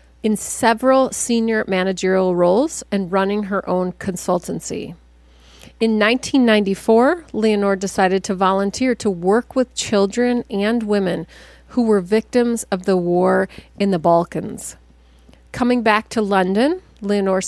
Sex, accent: female, American